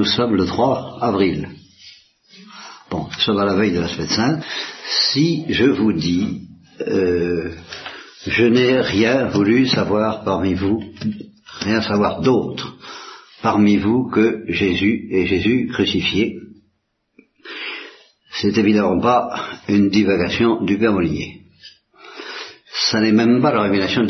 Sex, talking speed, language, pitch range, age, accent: male, 125 wpm, Italian, 95-120 Hz, 60-79, French